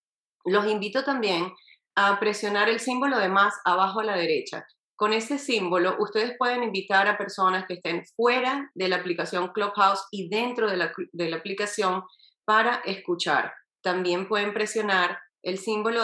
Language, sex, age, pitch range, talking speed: Spanish, female, 30-49, 175-220 Hz, 155 wpm